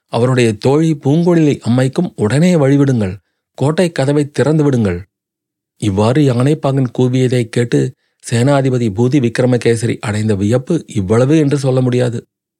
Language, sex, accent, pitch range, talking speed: Tamil, male, native, 120-150 Hz, 110 wpm